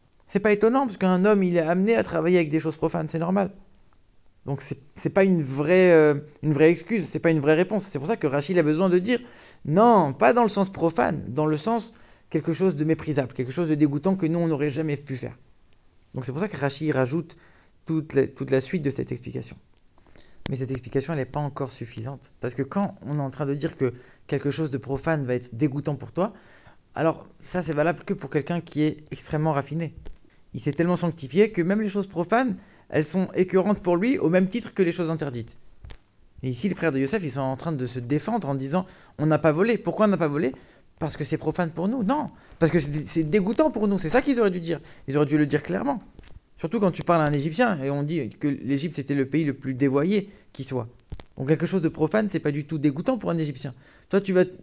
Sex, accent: male, French